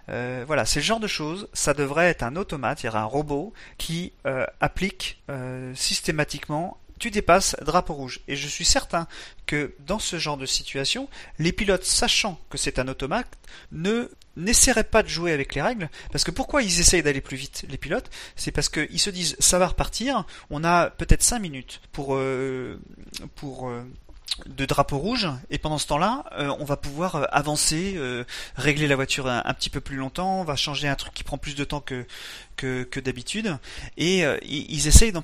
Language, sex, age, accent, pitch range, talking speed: French, male, 40-59, French, 125-170 Hz, 205 wpm